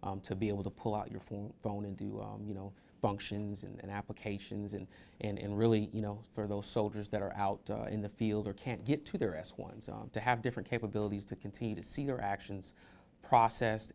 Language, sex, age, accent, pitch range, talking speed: English, male, 30-49, American, 100-110 Hz, 220 wpm